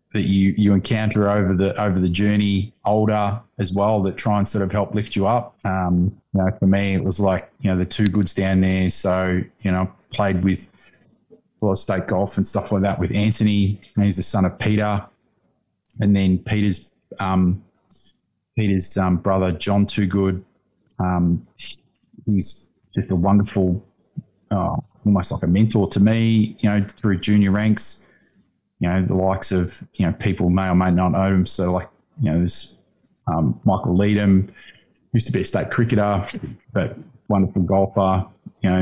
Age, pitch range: 20-39, 95-105 Hz